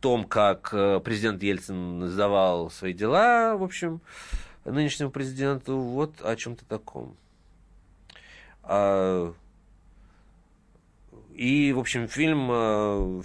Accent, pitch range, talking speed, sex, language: native, 100-140 Hz, 95 wpm, male, Russian